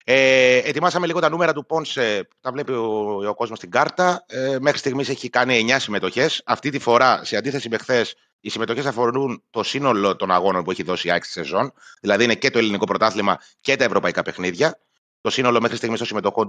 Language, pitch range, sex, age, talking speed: Greek, 115-155 Hz, male, 30-49, 205 wpm